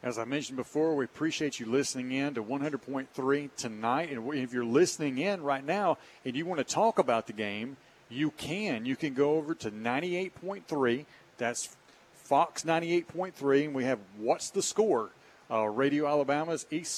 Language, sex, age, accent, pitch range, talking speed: English, male, 40-59, American, 125-160 Hz, 170 wpm